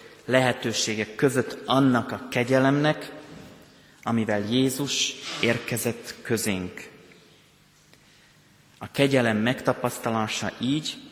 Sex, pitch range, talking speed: male, 110-135 Hz, 70 wpm